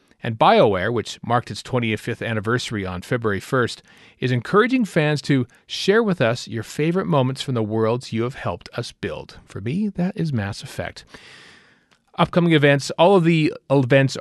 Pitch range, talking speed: 110-150 Hz, 170 wpm